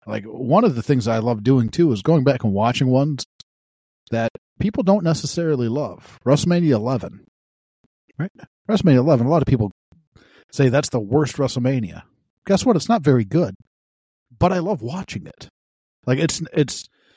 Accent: American